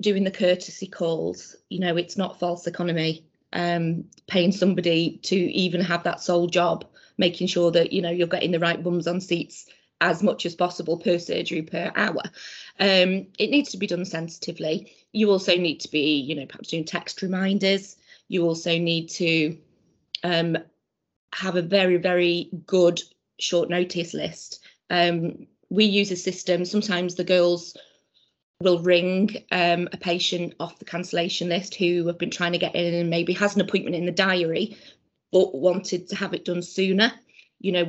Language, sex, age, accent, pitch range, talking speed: English, female, 20-39, British, 170-190 Hz, 175 wpm